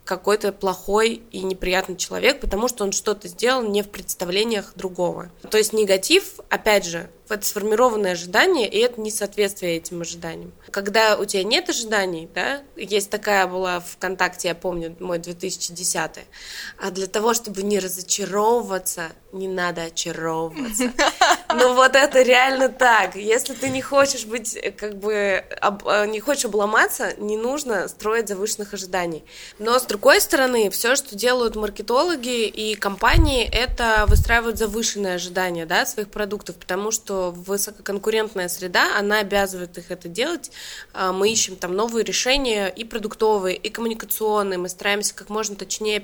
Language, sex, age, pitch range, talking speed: Russian, female, 20-39, 185-225 Hz, 145 wpm